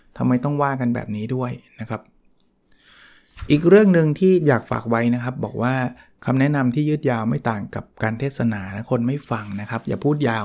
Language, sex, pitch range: Thai, male, 115-145 Hz